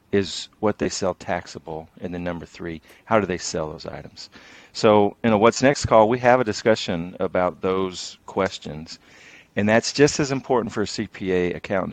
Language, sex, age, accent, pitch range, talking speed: English, male, 40-59, American, 85-105 Hz, 185 wpm